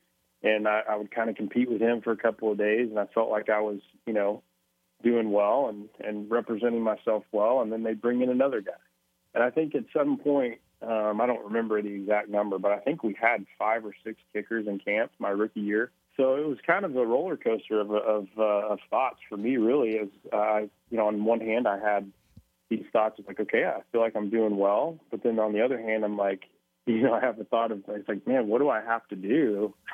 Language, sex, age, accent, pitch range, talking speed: English, male, 30-49, American, 100-115 Hz, 250 wpm